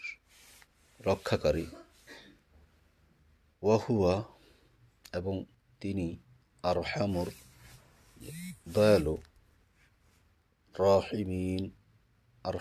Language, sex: Bengali, male